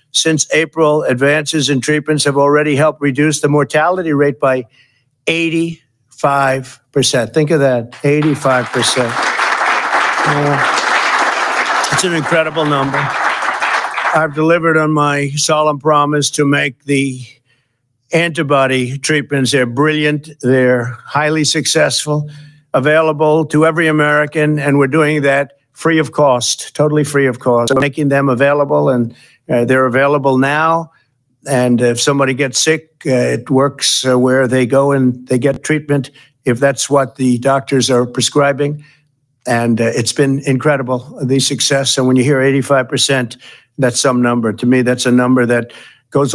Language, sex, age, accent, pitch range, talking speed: English, male, 50-69, American, 125-150 Hz, 140 wpm